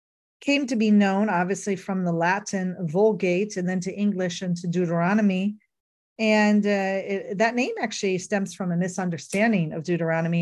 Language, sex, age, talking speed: English, female, 40-59, 160 wpm